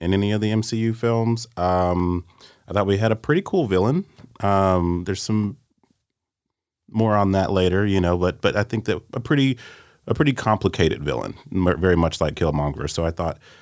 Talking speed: 185 wpm